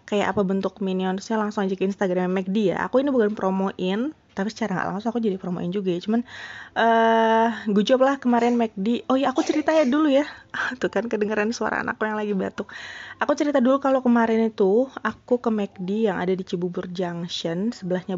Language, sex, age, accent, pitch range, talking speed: Indonesian, female, 20-39, native, 185-230 Hz, 190 wpm